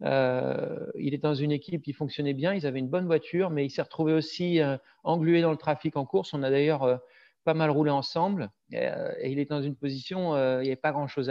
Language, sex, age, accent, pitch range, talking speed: French, male, 40-59, French, 130-155 Hz, 260 wpm